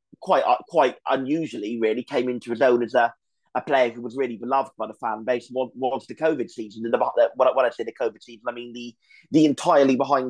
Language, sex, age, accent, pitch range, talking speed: English, male, 30-49, British, 120-140 Hz, 220 wpm